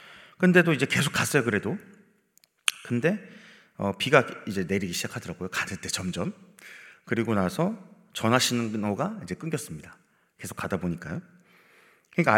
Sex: male